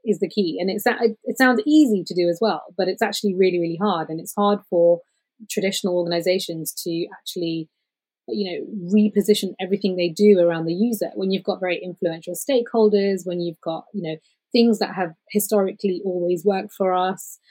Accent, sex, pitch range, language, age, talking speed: British, female, 170-200 Hz, English, 20-39, 185 wpm